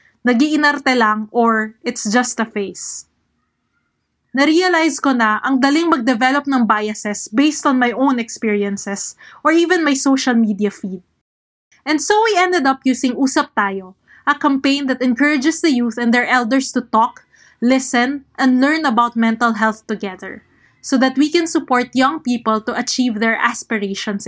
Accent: native